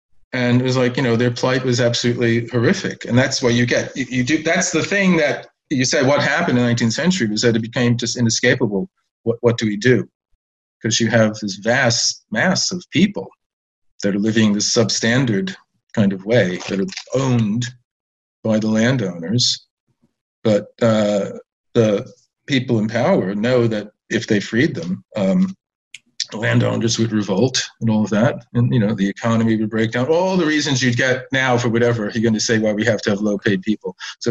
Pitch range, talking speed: 110-140 Hz, 200 wpm